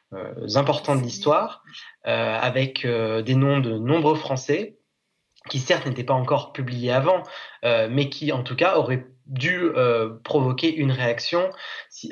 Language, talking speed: French, 160 wpm